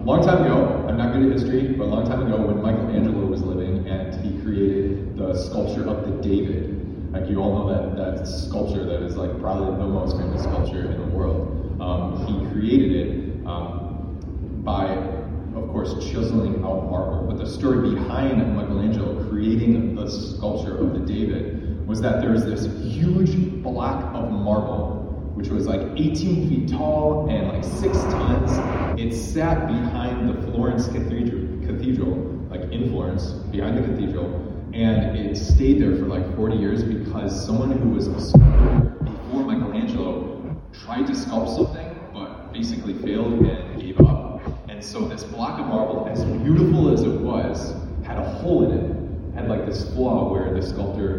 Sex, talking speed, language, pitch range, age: male, 170 wpm, English, 90-110 Hz, 30-49